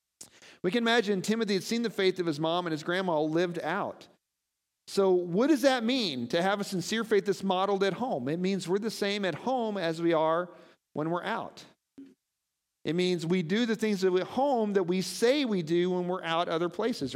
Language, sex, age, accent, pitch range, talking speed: English, male, 50-69, American, 155-215 Hz, 215 wpm